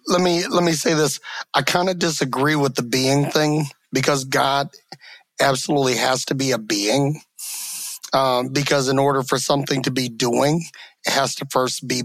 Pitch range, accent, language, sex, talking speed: 135-155 Hz, American, English, male, 180 wpm